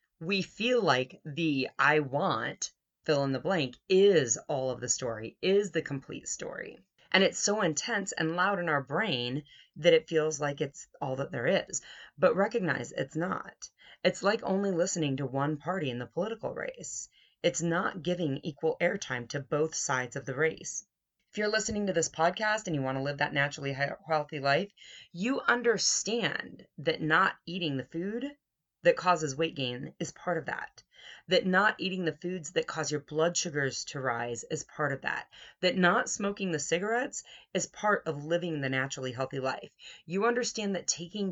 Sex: female